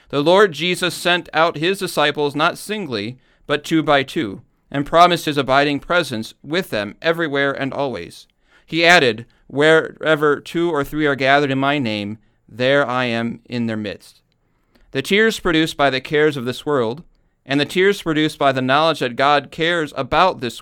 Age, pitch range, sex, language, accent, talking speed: 40-59, 125-155 Hz, male, English, American, 180 wpm